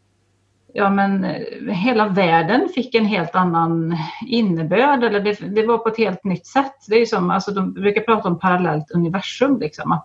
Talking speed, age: 180 wpm, 30-49